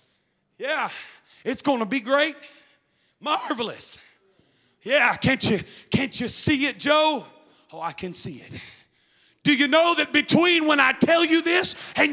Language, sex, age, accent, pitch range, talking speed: English, male, 40-59, American, 185-250 Hz, 150 wpm